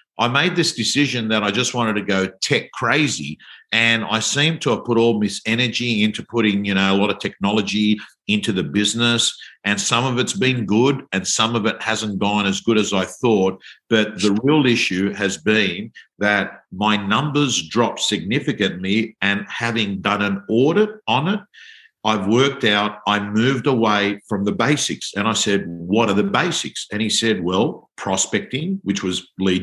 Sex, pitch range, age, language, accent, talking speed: male, 100-115 Hz, 50-69, English, Australian, 185 wpm